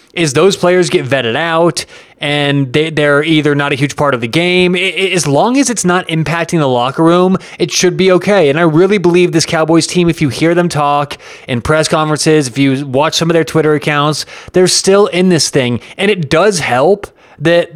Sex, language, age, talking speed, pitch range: male, English, 20-39, 210 wpm, 140-165 Hz